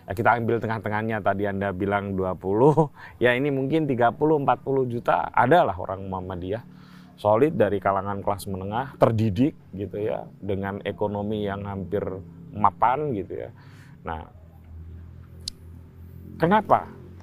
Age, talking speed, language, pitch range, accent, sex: 30-49, 110 wpm, Indonesian, 90-110 Hz, native, male